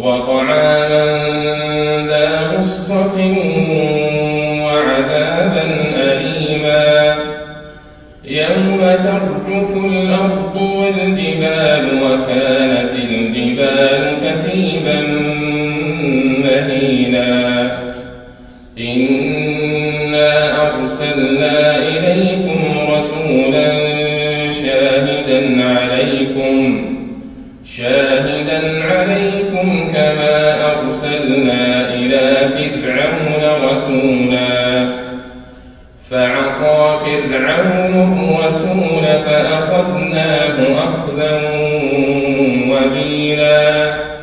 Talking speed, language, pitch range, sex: 45 wpm, Arabic, 135-165 Hz, male